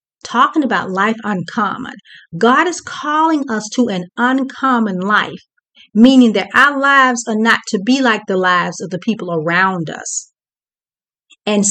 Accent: American